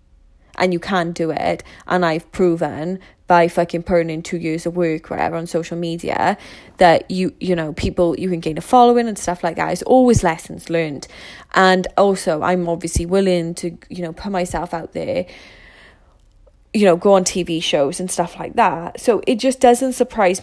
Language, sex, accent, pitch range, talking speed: English, female, British, 175-205 Hz, 195 wpm